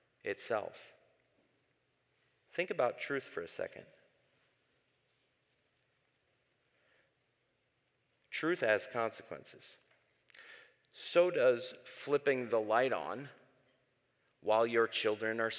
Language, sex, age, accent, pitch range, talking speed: English, male, 30-49, American, 120-145 Hz, 75 wpm